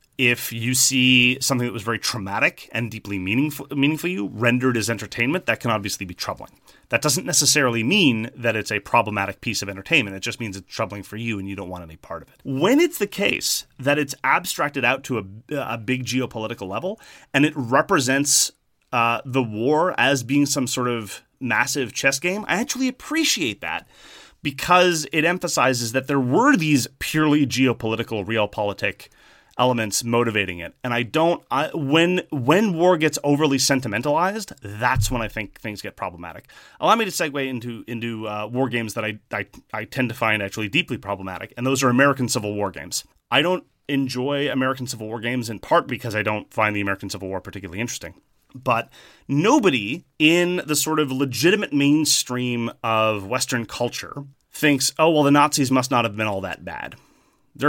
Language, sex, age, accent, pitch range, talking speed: English, male, 30-49, American, 110-140 Hz, 185 wpm